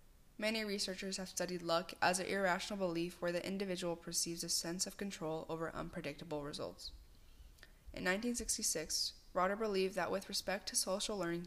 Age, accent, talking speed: 10-29, American, 155 wpm